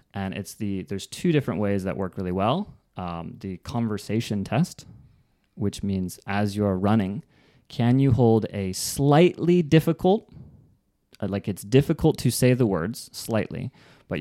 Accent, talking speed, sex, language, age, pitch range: American, 150 wpm, male, English, 30-49, 95-130 Hz